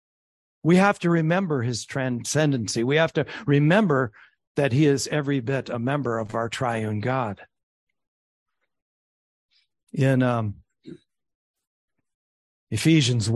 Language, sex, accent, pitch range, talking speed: English, male, American, 125-160 Hz, 110 wpm